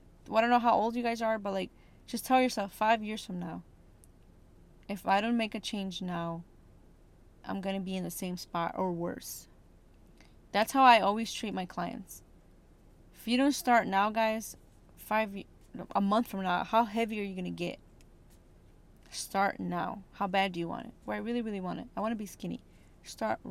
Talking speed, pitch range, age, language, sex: 200 wpm, 180-215 Hz, 20-39, English, female